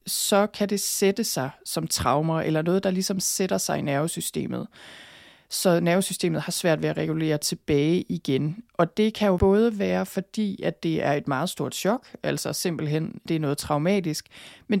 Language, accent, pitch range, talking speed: Danish, native, 165-195 Hz, 180 wpm